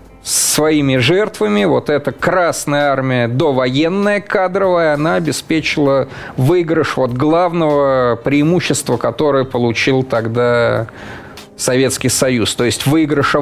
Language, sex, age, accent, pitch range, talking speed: Russian, male, 30-49, native, 120-155 Hz, 100 wpm